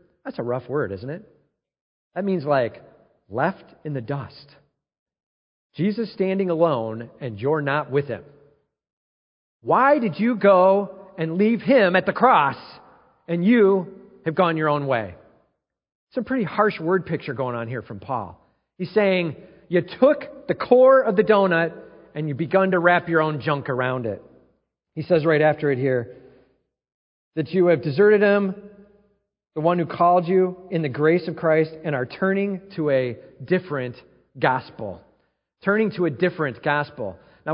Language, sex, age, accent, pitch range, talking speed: English, male, 40-59, American, 145-195 Hz, 165 wpm